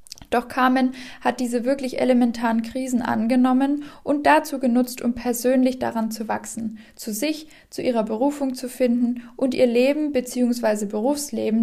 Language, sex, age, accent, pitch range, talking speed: German, female, 10-29, German, 225-265 Hz, 145 wpm